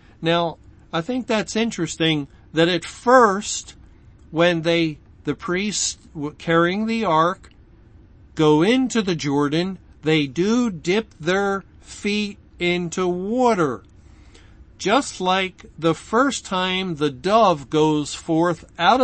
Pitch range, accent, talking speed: 135-175 Hz, American, 115 wpm